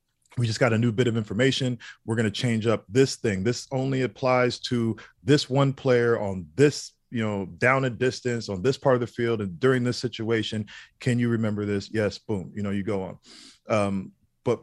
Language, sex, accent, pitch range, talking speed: English, male, American, 100-120 Hz, 215 wpm